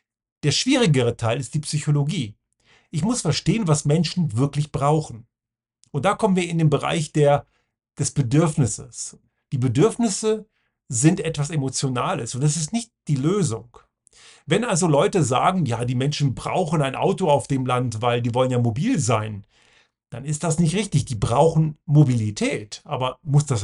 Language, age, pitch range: German, 40-59, 125-160 Hz